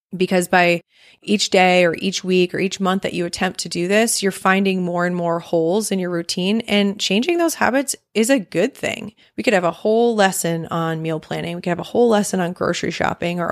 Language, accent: English, American